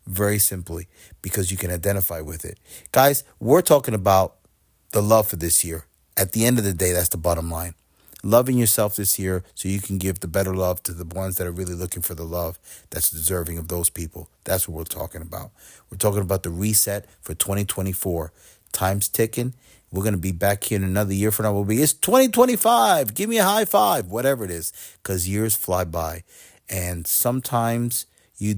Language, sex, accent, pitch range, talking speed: English, male, American, 90-110 Hz, 205 wpm